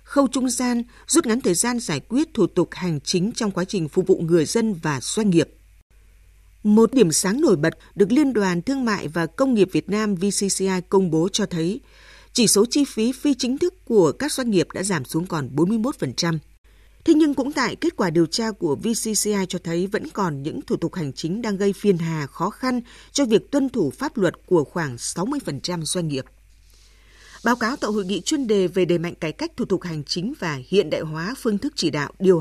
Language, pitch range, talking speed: Vietnamese, 165-230 Hz, 220 wpm